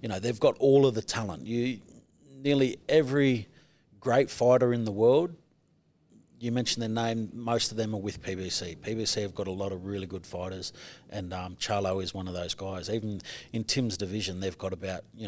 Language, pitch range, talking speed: English, 95-110 Hz, 200 wpm